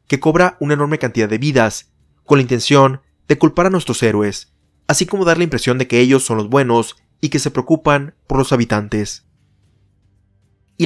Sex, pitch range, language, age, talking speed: male, 110-150 Hz, Spanish, 30-49, 190 wpm